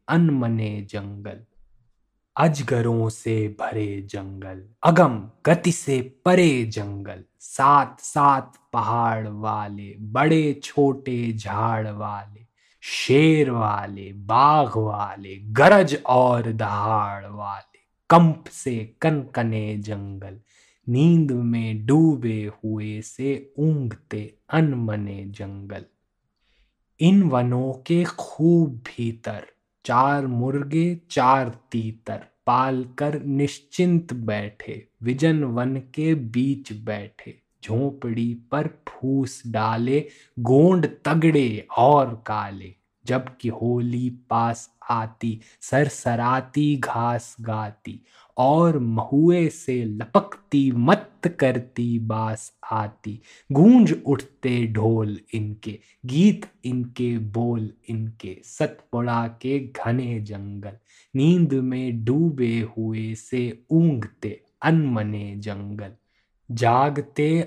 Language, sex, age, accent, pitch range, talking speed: Hindi, male, 20-39, native, 110-140 Hz, 90 wpm